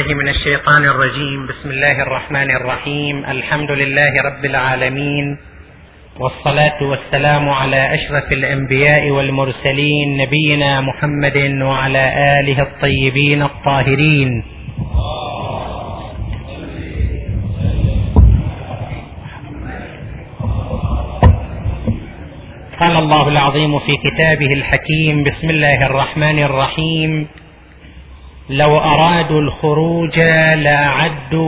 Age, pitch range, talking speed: 30-49, 130-155 Hz, 70 wpm